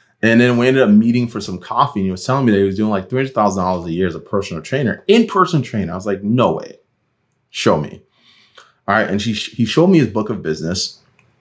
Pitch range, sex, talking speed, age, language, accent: 95-120 Hz, male, 240 wpm, 30-49, English, American